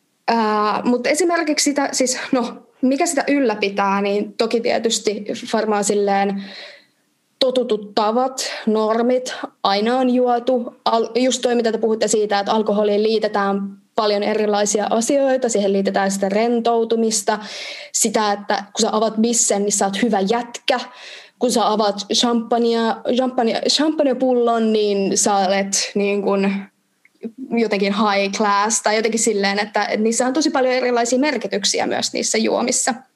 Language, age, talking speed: Finnish, 20-39, 130 wpm